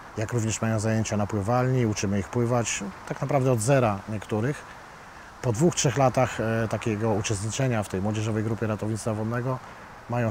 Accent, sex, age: native, male, 40-59